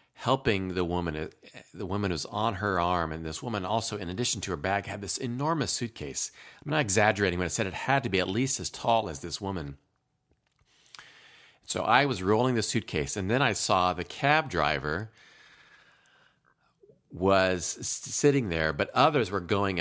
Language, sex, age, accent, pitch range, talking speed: English, male, 40-59, American, 85-110 Hz, 180 wpm